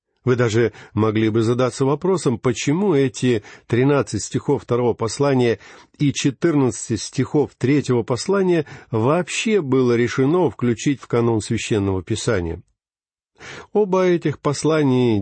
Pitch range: 115-160 Hz